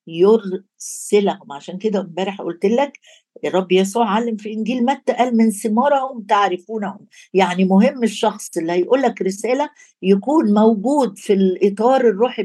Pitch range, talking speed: 190-235 Hz, 130 wpm